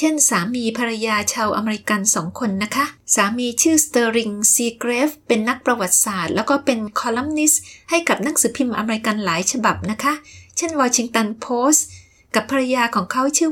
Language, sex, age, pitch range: Thai, female, 20-39, 195-270 Hz